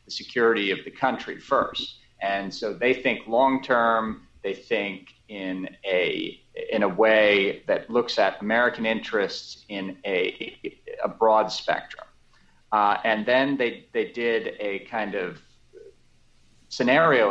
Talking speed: 130 wpm